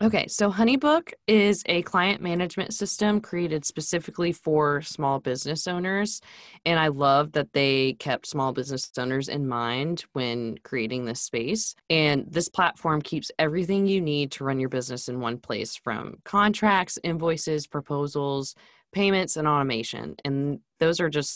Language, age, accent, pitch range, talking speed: English, 10-29, American, 130-165 Hz, 150 wpm